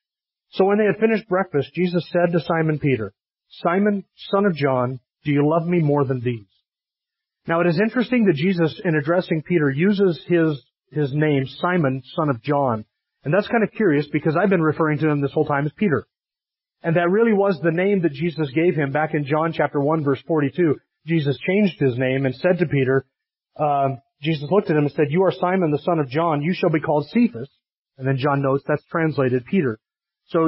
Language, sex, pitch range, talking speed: English, male, 145-190 Hz, 210 wpm